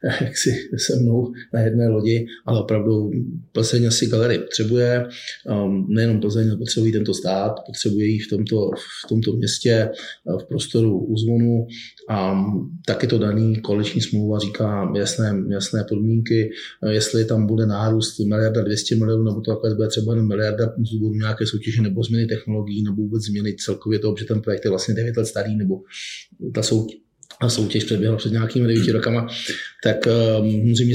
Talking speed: 160 wpm